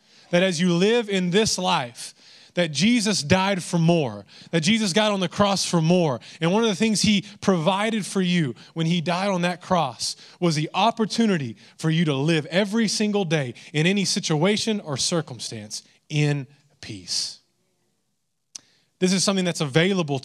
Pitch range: 150-190 Hz